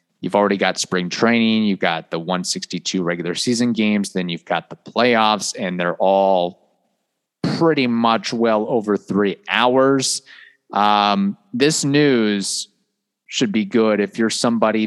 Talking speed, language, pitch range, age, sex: 140 wpm, English, 105-145 Hz, 30-49, male